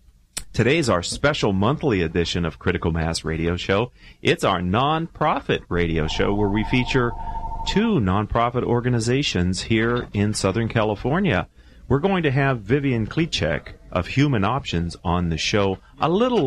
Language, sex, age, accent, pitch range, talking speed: English, male, 40-59, American, 95-130 Hz, 140 wpm